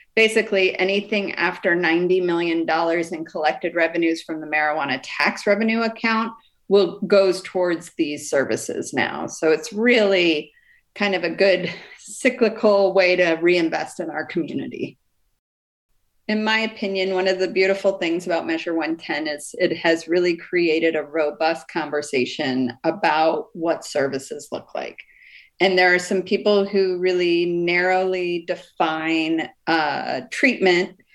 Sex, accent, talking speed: female, American, 135 wpm